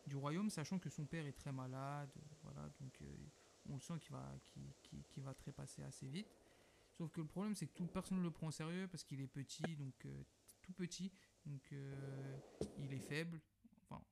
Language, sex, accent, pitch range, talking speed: French, male, French, 140-165 Hz, 205 wpm